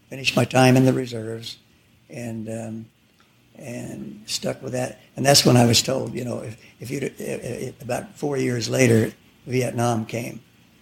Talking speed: 160 wpm